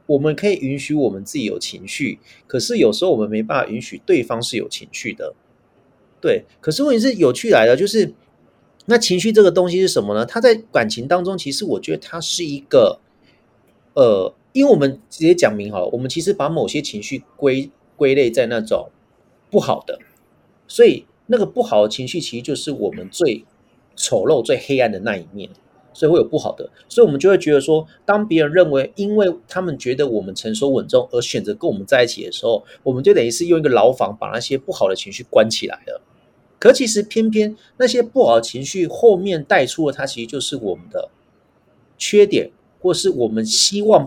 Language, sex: Chinese, male